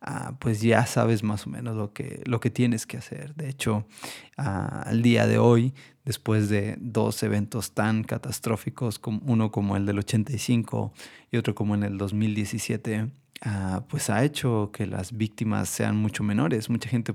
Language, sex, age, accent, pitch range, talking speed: Spanish, male, 30-49, Mexican, 105-120 Hz, 180 wpm